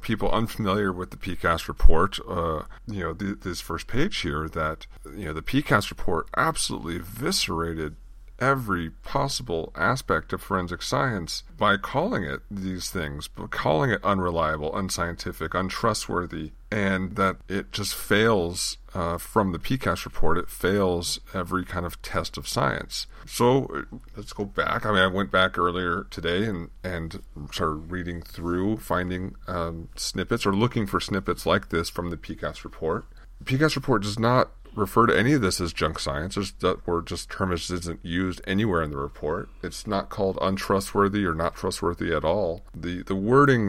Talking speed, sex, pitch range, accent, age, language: 165 wpm, male, 85-100 Hz, American, 40-59, English